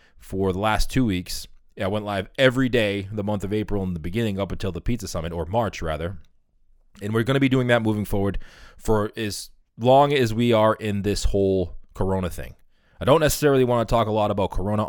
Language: English